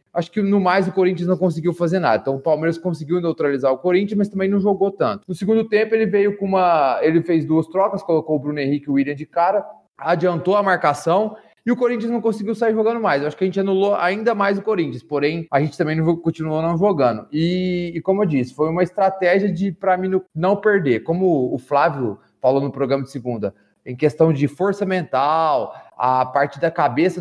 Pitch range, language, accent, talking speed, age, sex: 145-195 Hz, Portuguese, Brazilian, 220 wpm, 20-39, male